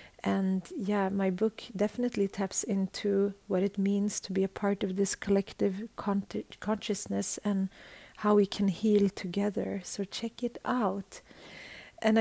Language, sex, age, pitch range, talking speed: English, female, 40-59, 195-215 Hz, 145 wpm